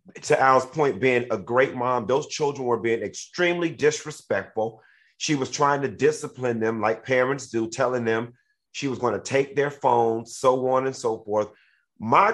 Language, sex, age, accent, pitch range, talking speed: English, male, 30-49, American, 125-165 Hz, 180 wpm